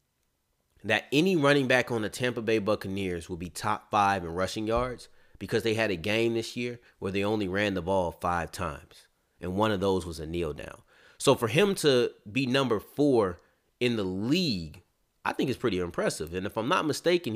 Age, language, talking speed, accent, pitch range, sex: 30-49, English, 205 wpm, American, 95-115 Hz, male